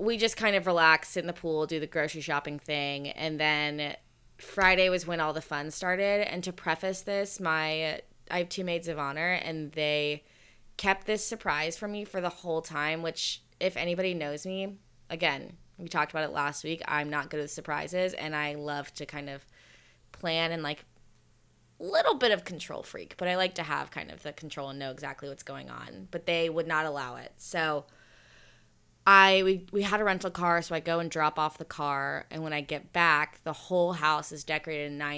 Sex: female